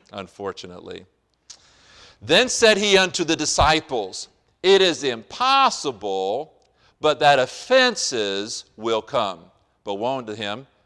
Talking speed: 105 wpm